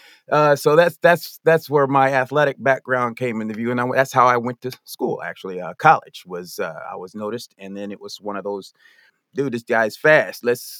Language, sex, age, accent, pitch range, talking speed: English, male, 30-49, American, 115-155 Hz, 220 wpm